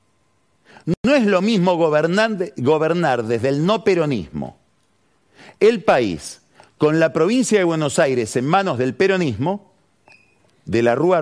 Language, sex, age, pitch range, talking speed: Spanish, male, 50-69, 145-200 Hz, 135 wpm